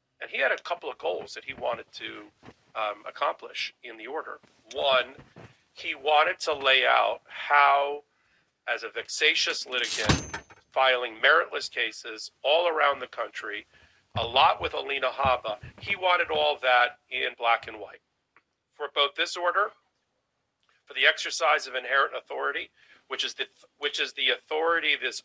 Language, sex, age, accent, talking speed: English, male, 40-59, American, 150 wpm